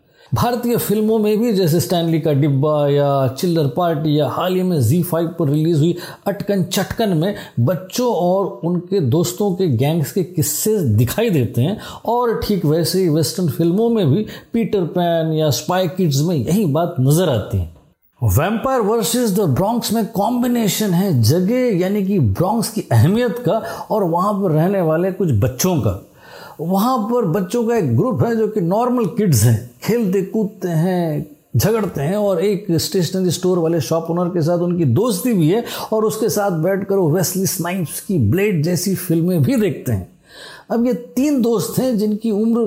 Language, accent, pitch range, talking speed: Hindi, native, 155-215 Hz, 175 wpm